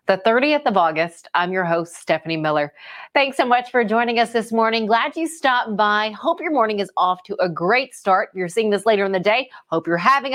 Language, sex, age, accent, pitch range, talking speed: English, female, 40-59, American, 190-250 Hz, 230 wpm